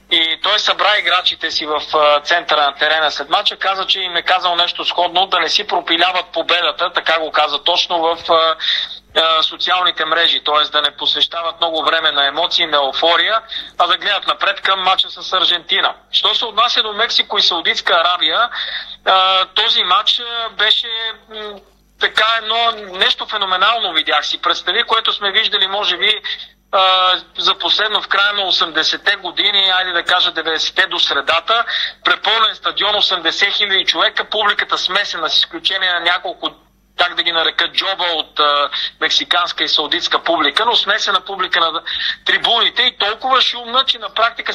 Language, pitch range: Bulgarian, 160-210 Hz